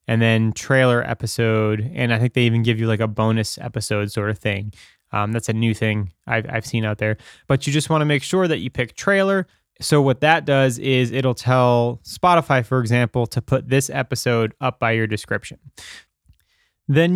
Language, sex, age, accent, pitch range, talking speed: English, male, 20-39, American, 120-150 Hz, 200 wpm